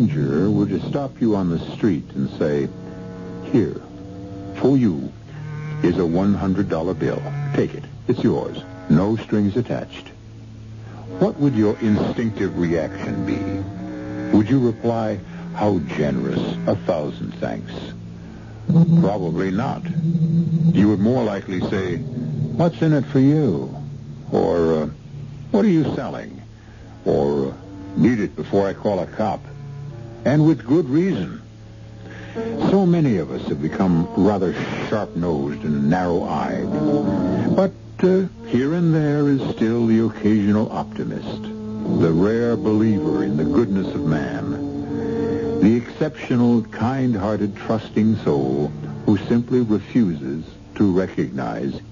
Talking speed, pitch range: 125 wpm, 95-135 Hz